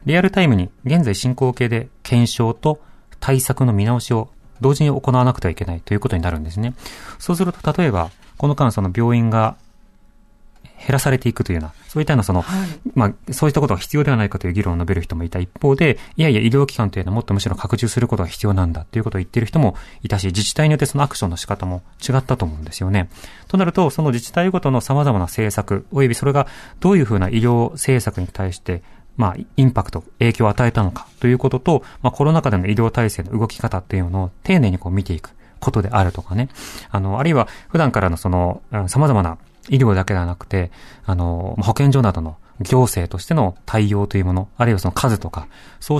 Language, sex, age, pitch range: Japanese, male, 30-49, 95-135 Hz